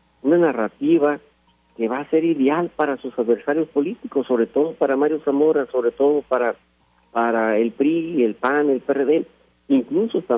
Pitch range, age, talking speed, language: 115-155 Hz, 50-69, 160 wpm, Spanish